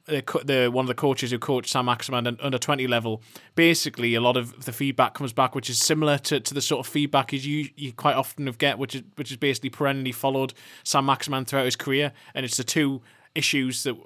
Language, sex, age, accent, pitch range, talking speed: English, male, 20-39, British, 120-140 Hz, 240 wpm